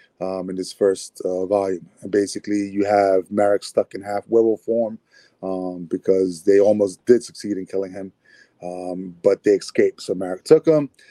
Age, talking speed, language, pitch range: 30-49, 180 wpm, English, 100-120 Hz